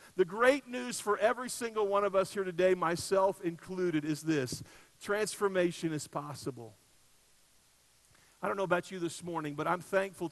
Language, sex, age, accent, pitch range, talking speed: English, male, 50-69, American, 155-195 Hz, 165 wpm